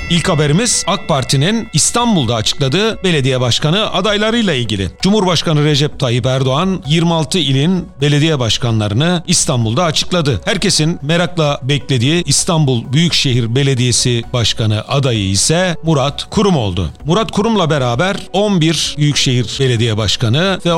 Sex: male